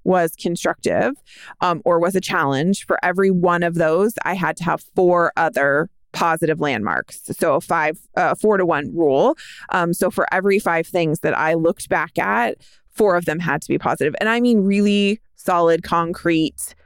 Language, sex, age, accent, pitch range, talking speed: English, female, 20-39, American, 170-210 Hz, 185 wpm